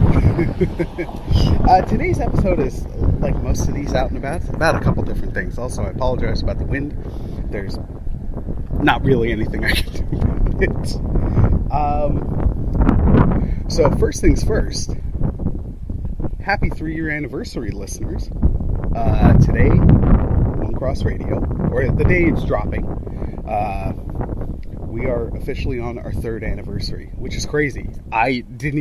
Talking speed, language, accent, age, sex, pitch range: 135 wpm, English, American, 30-49, male, 95-125 Hz